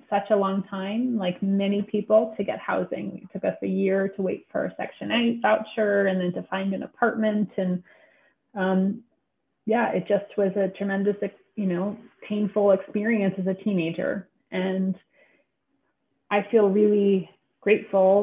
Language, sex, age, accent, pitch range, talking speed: English, female, 30-49, American, 190-220 Hz, 160 wpm